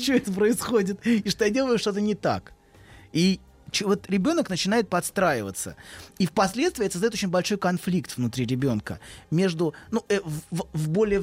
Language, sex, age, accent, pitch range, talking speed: Russian, male, 30-49, native, 145-200 Hz, 155 wpm